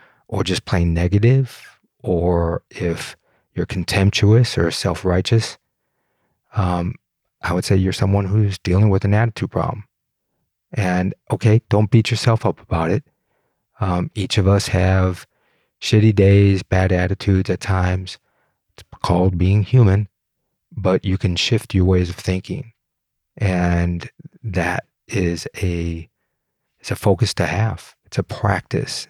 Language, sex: English, male